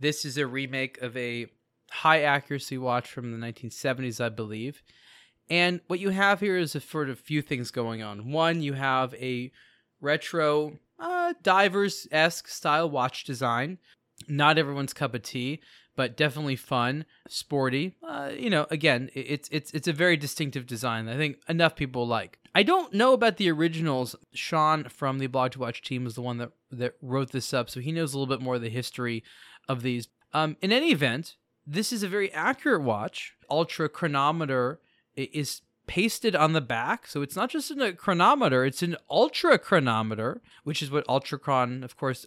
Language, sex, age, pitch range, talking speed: English, male, 20-39, 125-160 Hz, 185 wpm